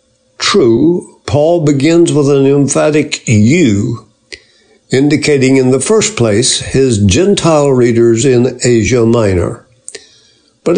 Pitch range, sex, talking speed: 115-145 Hz, male, 105 wpm